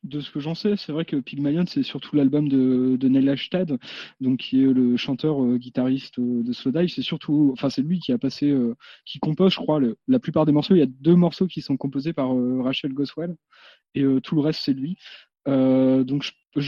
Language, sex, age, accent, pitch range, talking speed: French, male, 20-39, French, 135-175 Hz, 235 wpm